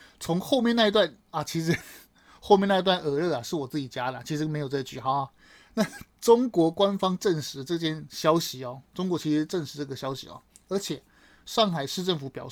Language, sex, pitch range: Chinese, male, 150-205 Hz